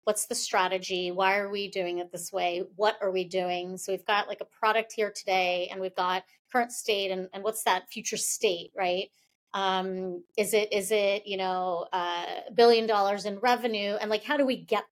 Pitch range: 195-245 Hz